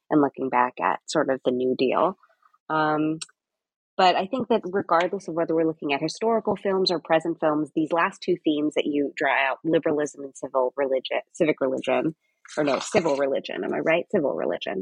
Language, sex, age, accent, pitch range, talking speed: English, female, 30-49, American, 145-180 Hz, 195 wpm